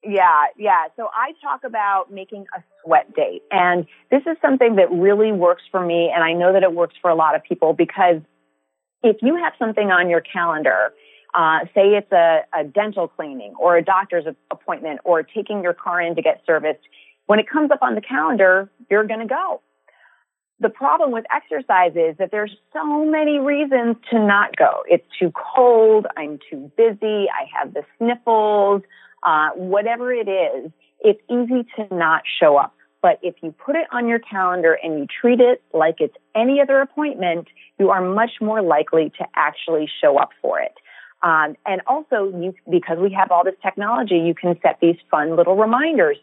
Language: English